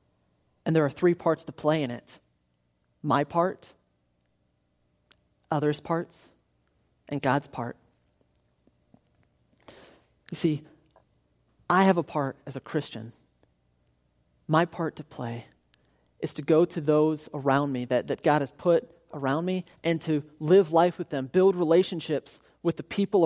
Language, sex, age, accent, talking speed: English, male, 30-49, American, 140 wpm